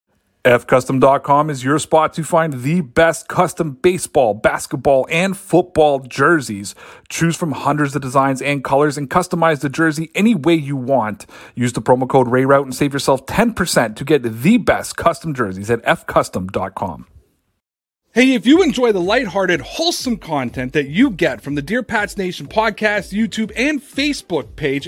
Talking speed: 160 wpm